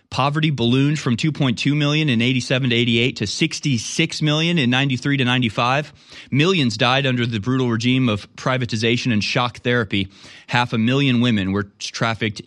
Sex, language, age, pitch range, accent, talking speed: male, English, 30-49, 115-150 Hz, American, 160 wpm